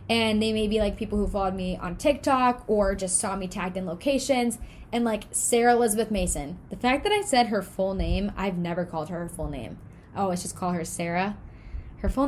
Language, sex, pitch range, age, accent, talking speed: English, female, 195-260 Hz, 10-29, American, 230 wpm